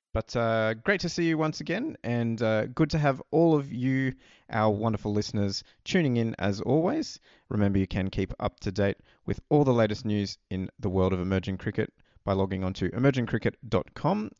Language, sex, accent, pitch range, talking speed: English, male, Australian, 100-120 Hz, 190 wpm